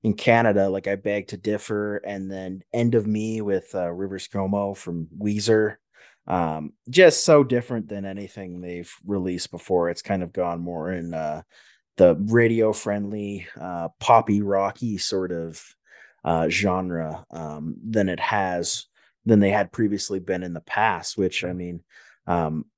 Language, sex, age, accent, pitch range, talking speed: English, male, 30-49, American, 85-110 Hz, 160 wpm